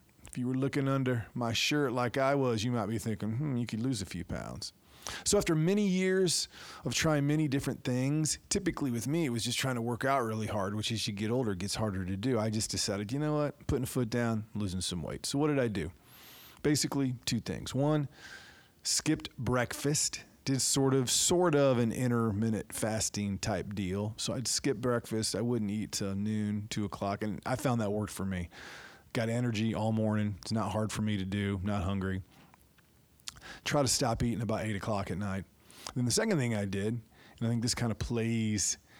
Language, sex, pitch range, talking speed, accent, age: English, male, 100-125 Hz, 210 wpm, American, 40-59